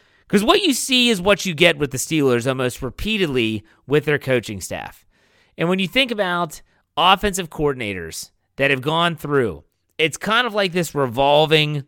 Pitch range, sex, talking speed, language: 120-175 Hz, male, 170 wpm, English